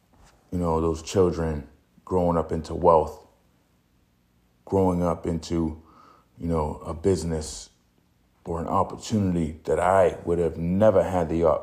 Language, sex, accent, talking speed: English, male, American, 130 wpm